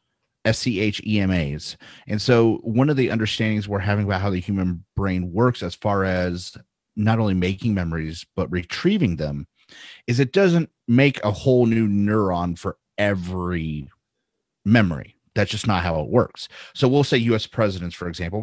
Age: 30-49